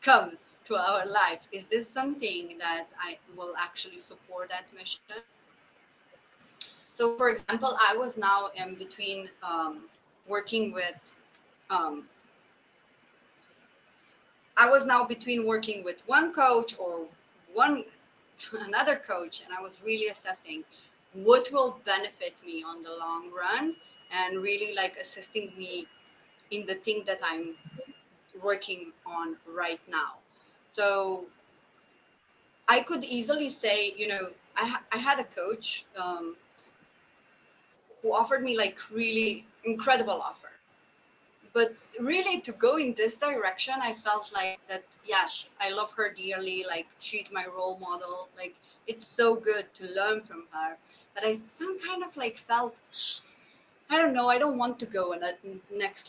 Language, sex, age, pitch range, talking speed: English, female, 30-49, 185-245 Hz, 145 wpm